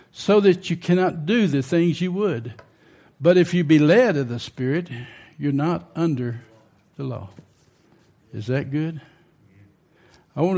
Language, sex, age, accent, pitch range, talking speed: English, male, 60-79, American, 125-165 Hz, 155 wpm